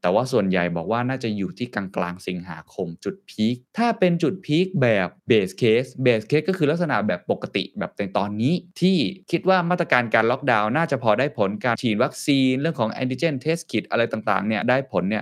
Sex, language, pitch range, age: male, Thai, 95-140 Hz, 20-39